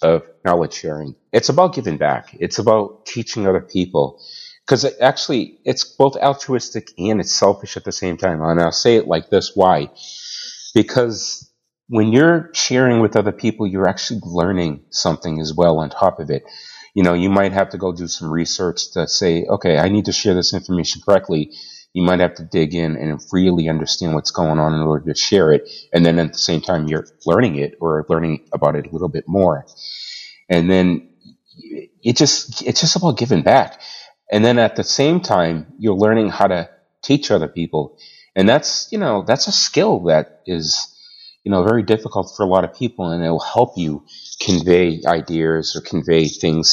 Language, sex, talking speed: English, male, 195 wpm